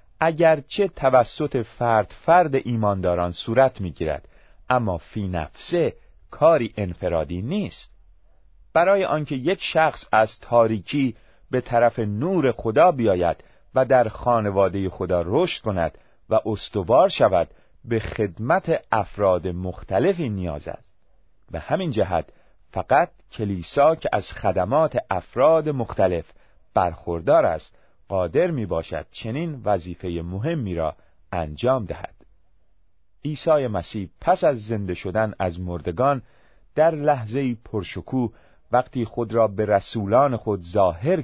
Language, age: Persian, 40-59